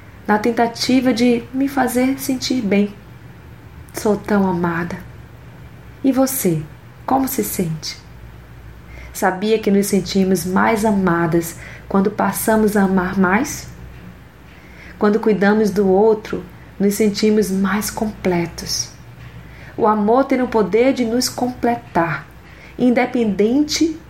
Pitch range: 180-235 Hz